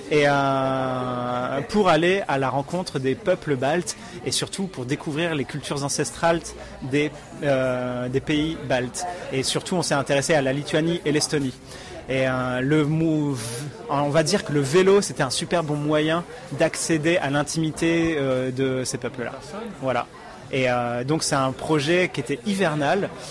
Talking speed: 165 wpm